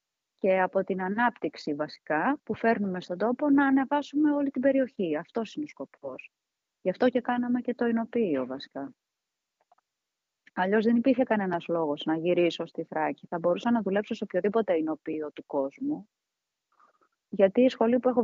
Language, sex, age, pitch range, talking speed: Greek, female, 30-49, 185-260 Hz, 160 wpm